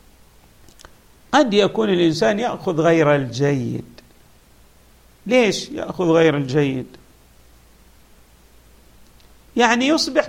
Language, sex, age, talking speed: Arabic, male, 50-69, 70 wpm